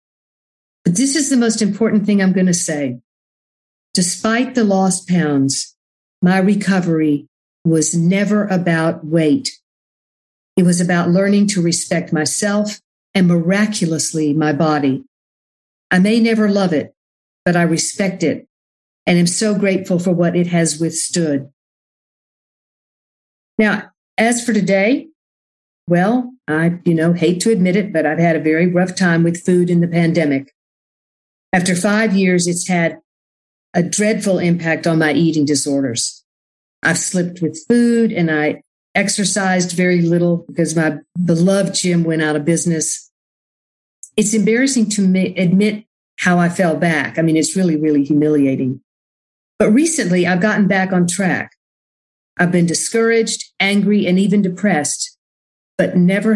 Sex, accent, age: female, American, 50-69